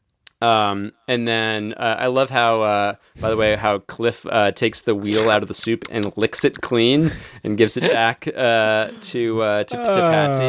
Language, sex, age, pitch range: English, male, 20-39, 100-130 Hz